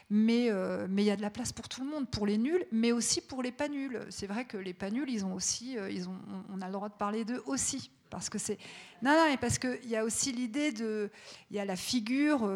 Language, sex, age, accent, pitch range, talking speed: French, female, 40-59, French, 200-245 Hz, 285 wpm